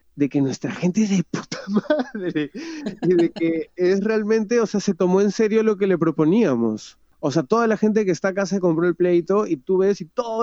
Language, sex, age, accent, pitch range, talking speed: Spanish, male, 30-49, Argentinian, 140-185 Hz, 230 wpm